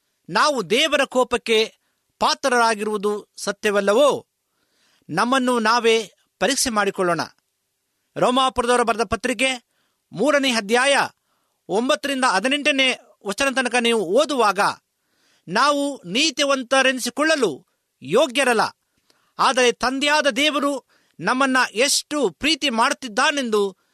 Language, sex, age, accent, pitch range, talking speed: Kannada, male, 50-69, native, 225-270 Hz, 75 wpm